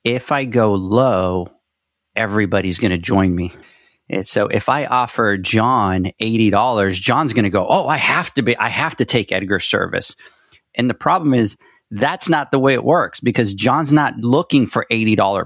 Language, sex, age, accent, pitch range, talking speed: English, male, 40-59, American, 110-140 Hz, 175 wpm